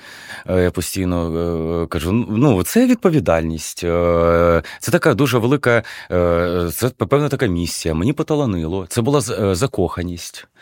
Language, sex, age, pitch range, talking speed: Ukrainian, male, 30-49, 85-130 Hz, 105 wpm